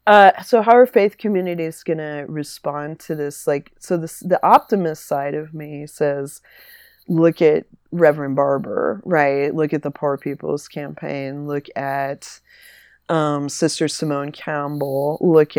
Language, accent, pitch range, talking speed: English, American, 140-155 Hz, 145 wpm